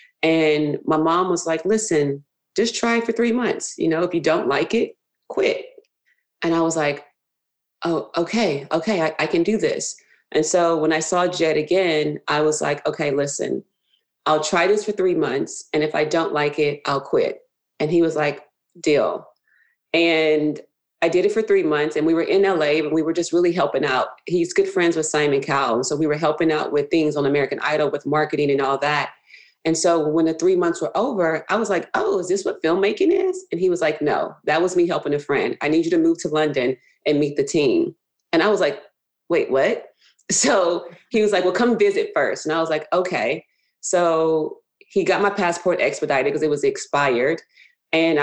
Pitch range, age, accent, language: 150-220 Hz, 30-49, American, English